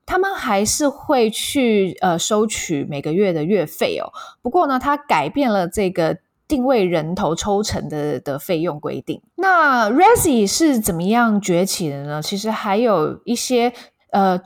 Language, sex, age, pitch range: Chinese, female, 20-39, 175-260 Hz